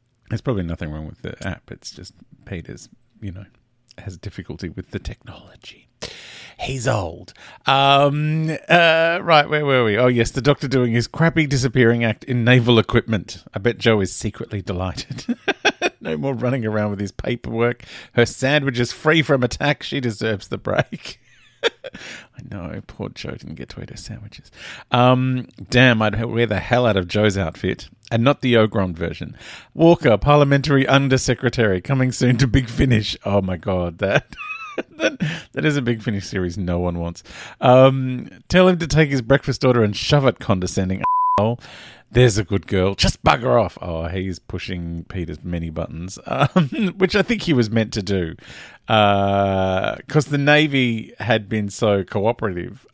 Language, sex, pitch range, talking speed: English, male, 95-135 Hz, 170 wpm